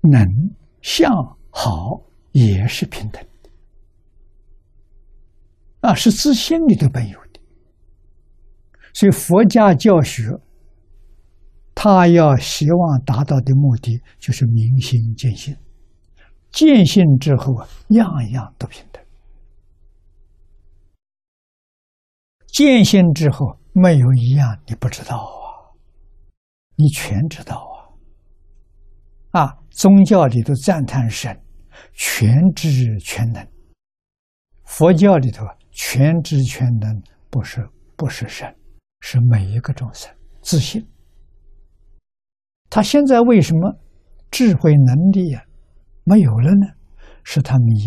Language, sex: Chinese, male